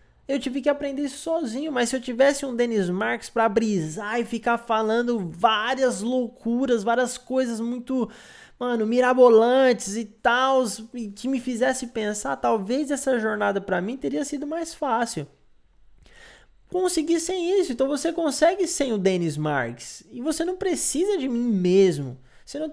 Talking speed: 155 wpm